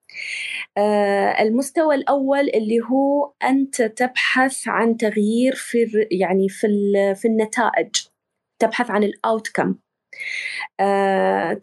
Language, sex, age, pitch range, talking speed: Arabic, female, 20-39, 205-270 Hz, 95 wpm